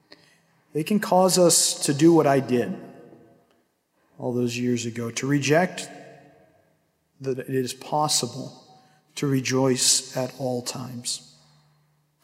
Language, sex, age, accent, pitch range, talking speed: English, male, 40-59, American, 125-155 Hz, 120 wpm